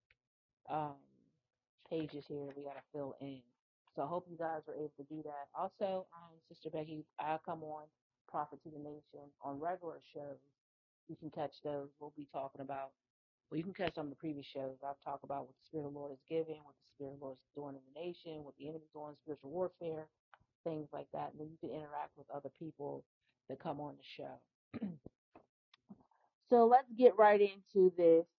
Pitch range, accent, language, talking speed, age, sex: 140-170 Hz, American, English, 205 wpm, 30-49, female